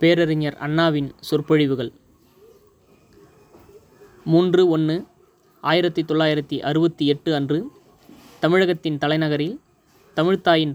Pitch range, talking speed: 145-170 Hz, 75 wpm